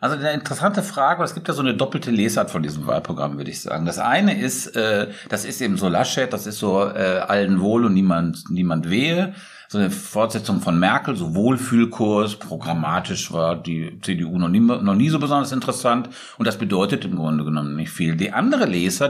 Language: German